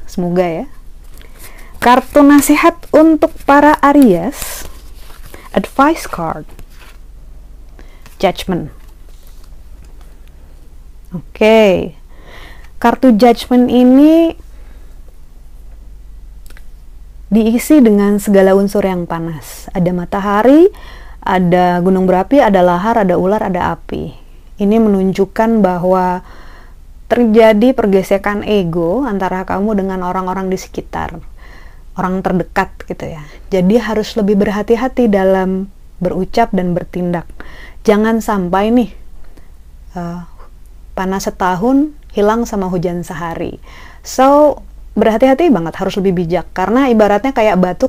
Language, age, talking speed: Indonesian, 30-49, 95 wpm